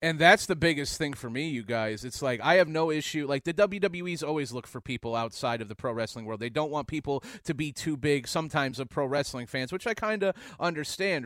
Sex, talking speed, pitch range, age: male, 245 wpm, 150-185 Hz, 30-49